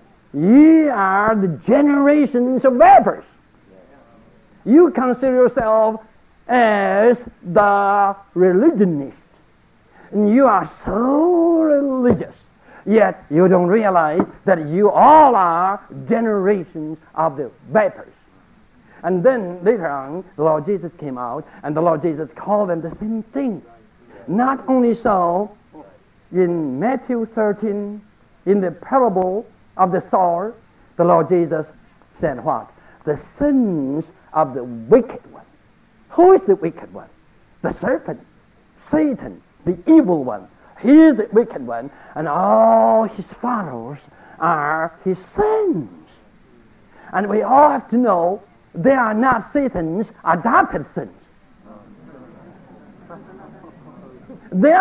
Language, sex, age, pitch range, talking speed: English, male, 60-79, 175-250 Hz, 115 wpm